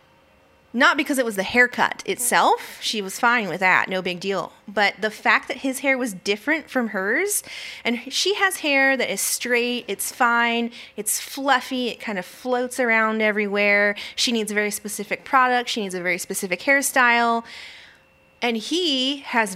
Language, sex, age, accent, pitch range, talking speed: English, female, 20-39, American, 195-255 Hz, 175 wpm